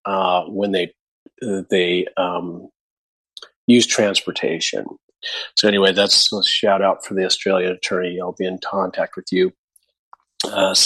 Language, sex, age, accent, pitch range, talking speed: English, male, 40-59, American, 100-120 Hz, 135 wpm